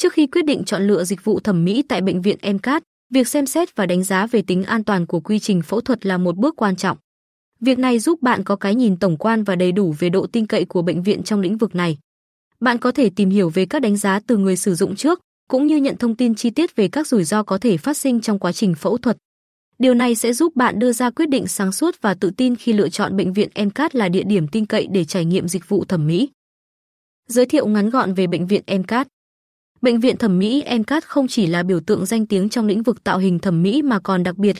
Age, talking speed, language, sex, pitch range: 20-39, 265 wpm, Vietnamese, female, 190-250 Hz